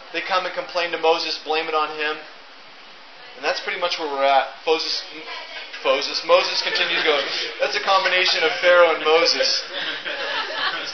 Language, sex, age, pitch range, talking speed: English, male, 20-39, 155-180 Hz, 170 wpm